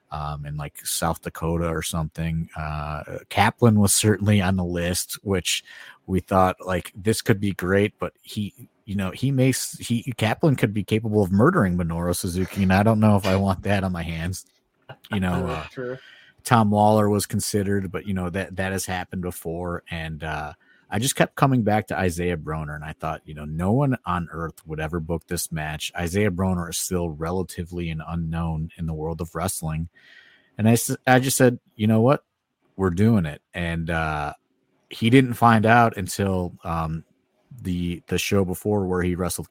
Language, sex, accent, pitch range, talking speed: English, male, American, 80-100 Hz, 190 wpm